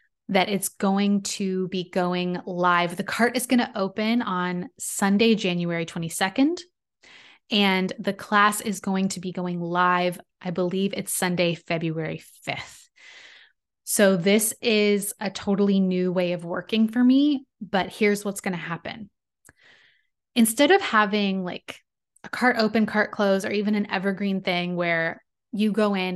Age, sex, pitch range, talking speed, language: 20-39, female, 180-215 Hz, 150 wpm, English